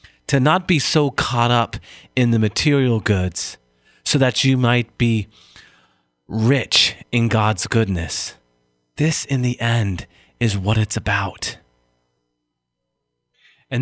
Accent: American